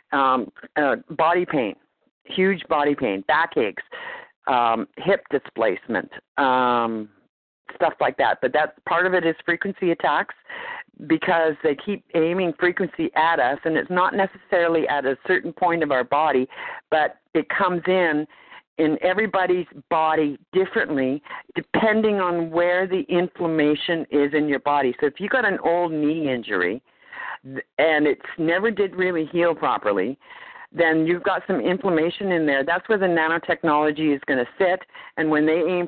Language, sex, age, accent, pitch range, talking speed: English, female, 50-69, American, 155-195 Hz, 155 wpm